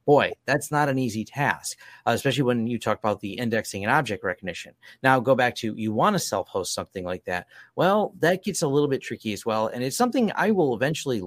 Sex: male